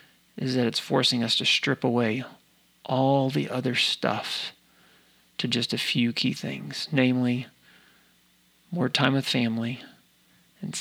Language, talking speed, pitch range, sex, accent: English, 135 wpm, 115-135 Hz, male, American